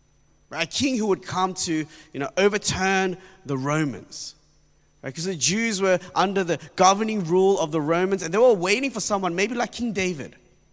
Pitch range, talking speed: 145-210 Hz, 185 wpm